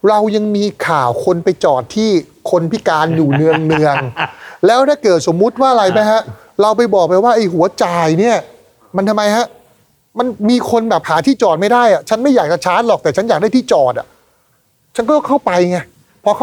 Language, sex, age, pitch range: Thai, male, 30-49, 165-240 Hz